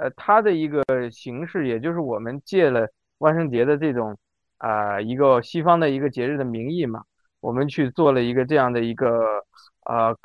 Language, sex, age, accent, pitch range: Chinese, male, 20-39, native, 115-160 Hz